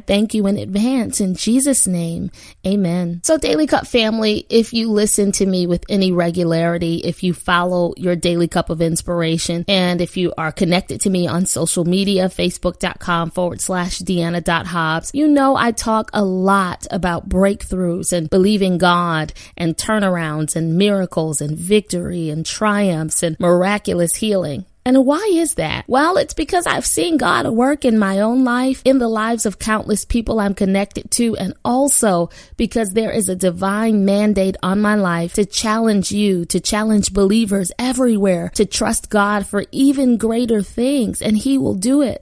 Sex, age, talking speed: female, 20-39, 170 wpm